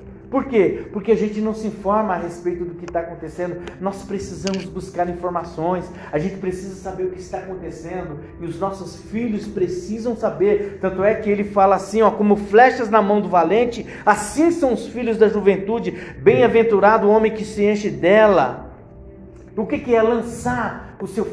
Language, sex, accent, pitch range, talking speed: Portuguese, male, Brazilian, 185-235 Hz, 175 wpm